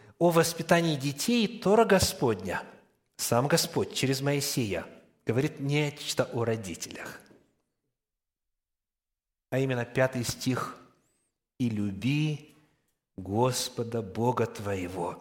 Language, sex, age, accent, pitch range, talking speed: Russian, male, 30-49, native, 140-210 Hz, 85 wpm